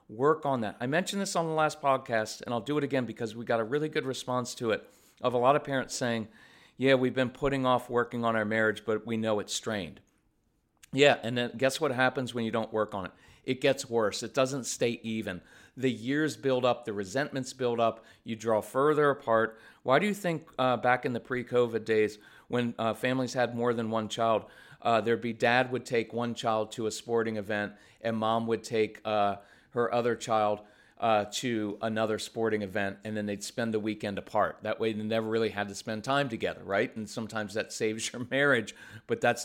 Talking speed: 220 wpm